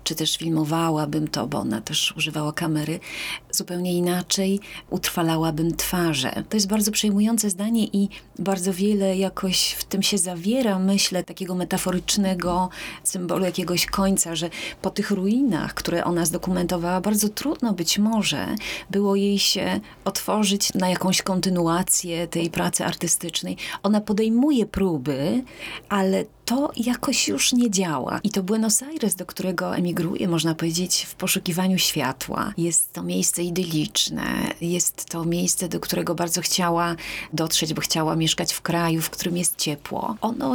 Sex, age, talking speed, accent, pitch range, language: female, 30-49, 140 wpm, native, 175-210 Hz, Polish